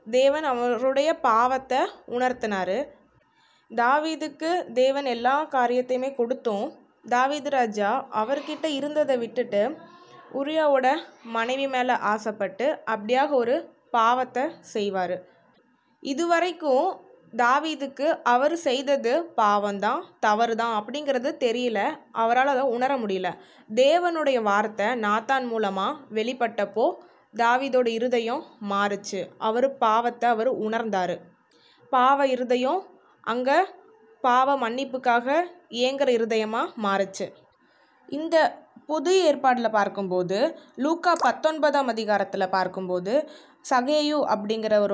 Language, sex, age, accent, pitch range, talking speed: Tamil, female, 20-39, native, 220-295 Hz, 85 wpm